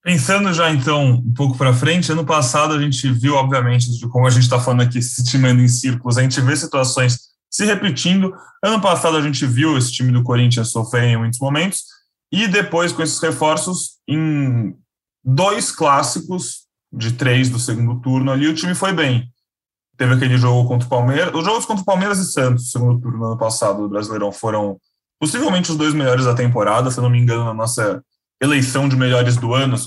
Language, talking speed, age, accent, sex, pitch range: Portuguese, 200 wpm, 10-29, Brazilian, male, 115-150 Hz